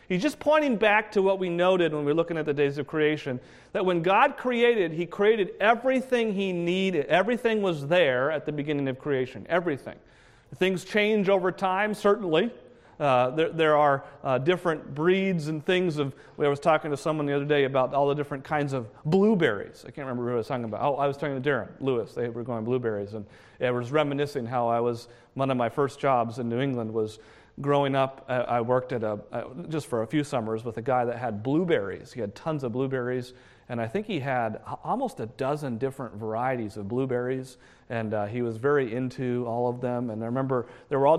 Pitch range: 125-160 Hz